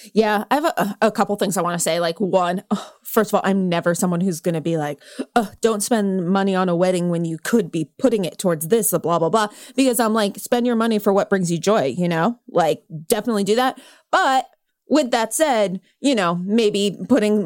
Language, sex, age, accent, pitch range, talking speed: English, female, 20-39, American, 185-235 Hz, 225 wpm